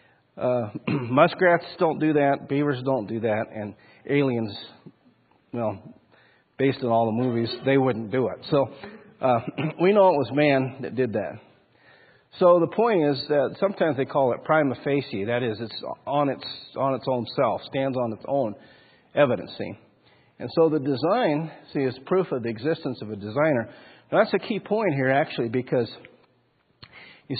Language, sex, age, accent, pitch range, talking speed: English, male, 50-69, American, 120-165 Hz, 170 wpm